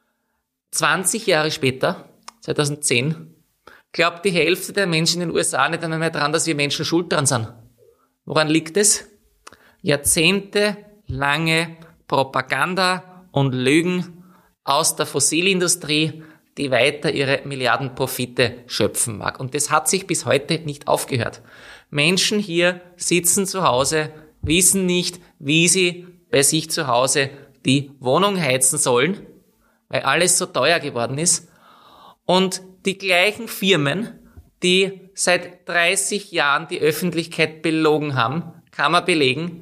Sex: male